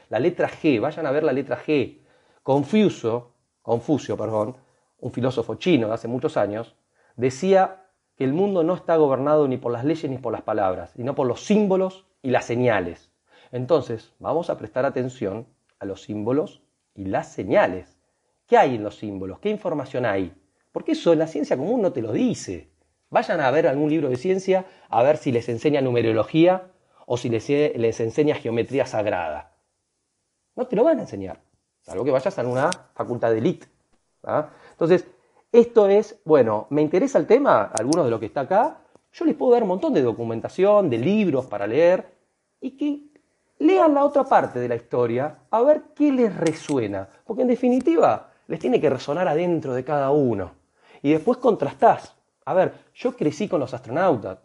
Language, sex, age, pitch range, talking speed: Spanish, male, 40-59, 120-190 Hz, 185 wpm